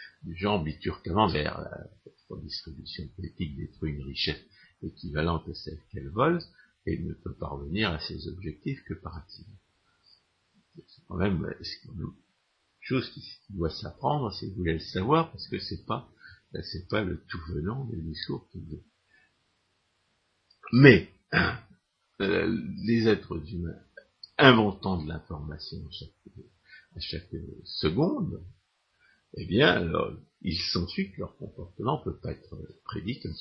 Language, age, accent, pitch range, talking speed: French, 50-69, French, 80-110 Hz, 145 wpm